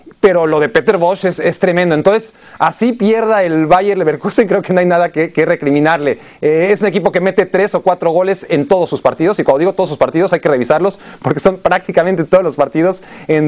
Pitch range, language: 160-195 Hz, Spanish